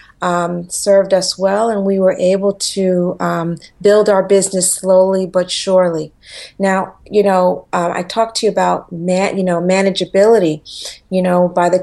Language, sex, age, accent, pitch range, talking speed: English, female, 40-59, American, 180-200 Hz, 160 wpm